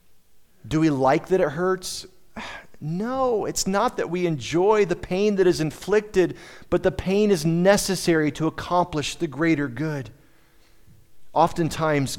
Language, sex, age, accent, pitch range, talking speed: English, male, 40-59, American, 120-180 Hz, 140 wpm